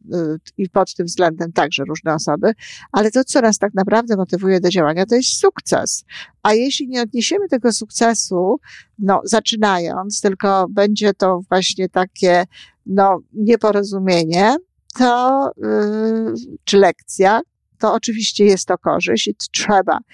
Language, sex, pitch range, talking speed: Polish, female, 175-220 Hz, 130 wpm